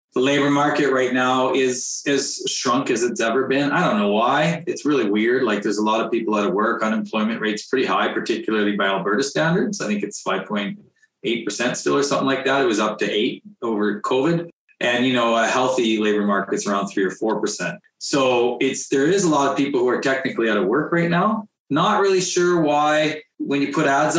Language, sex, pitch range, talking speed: English, male, 105-150 Hz, 215 wpm